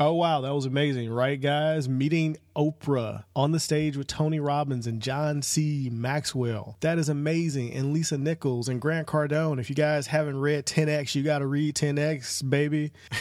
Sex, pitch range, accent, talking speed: male, 120-150 Hz, American, 180 wpm